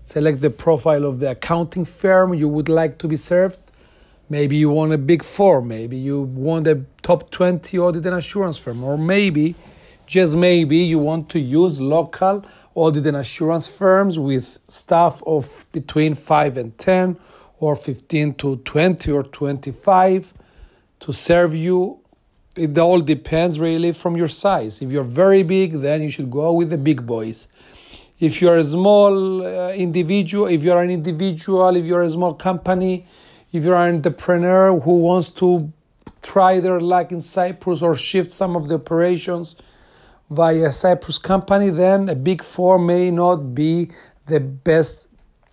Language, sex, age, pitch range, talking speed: Greek, male, 40-59, 150-185 Hz, 160 wpm